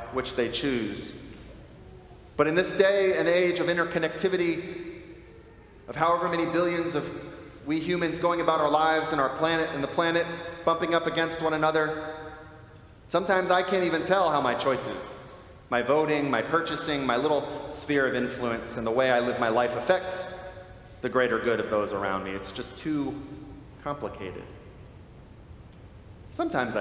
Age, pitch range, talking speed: 30-49, 120-165 Hz, 155 wpm